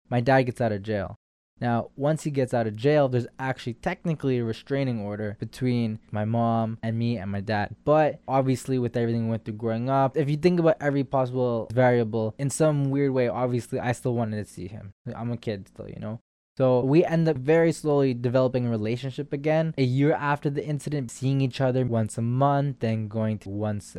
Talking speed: 215 wpm